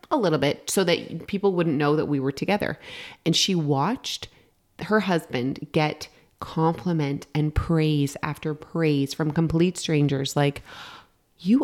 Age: 30-49